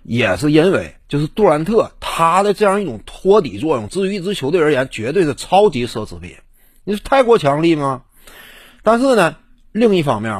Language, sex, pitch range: Chinese, male, 110-185 Hz